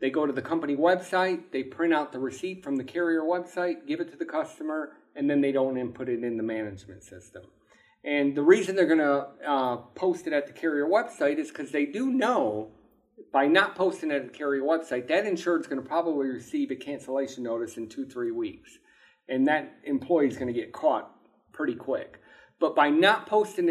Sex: male